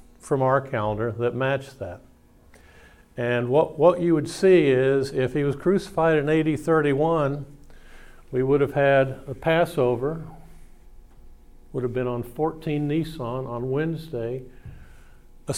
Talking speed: 135 wpm